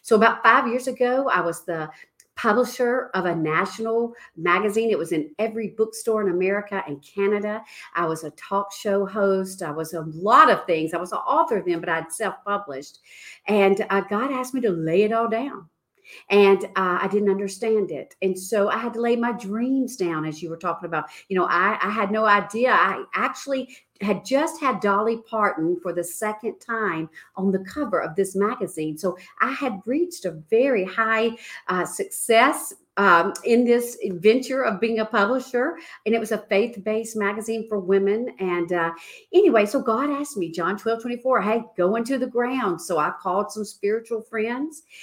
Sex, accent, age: female, American, 50-69